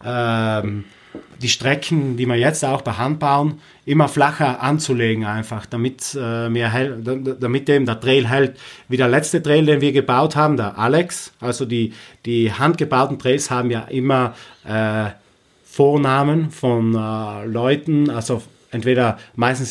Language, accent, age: German, German, 30-49